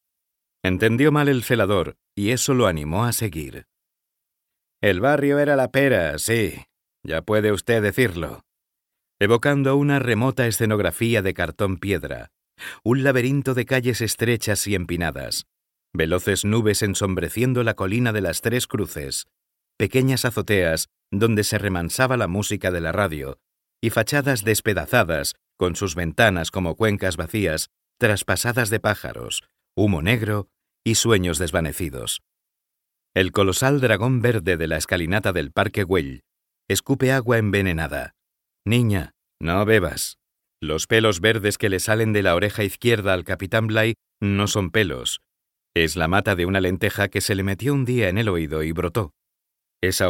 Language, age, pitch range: Spanish, 50-69, 90-115 Hz